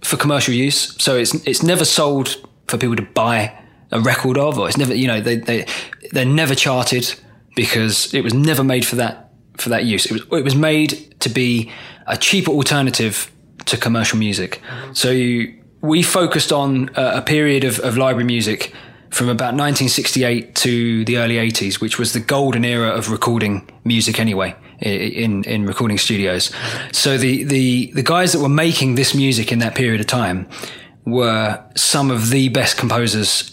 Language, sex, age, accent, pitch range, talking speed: English, male, 20-39, British, 115-140 Hz, 180 wpm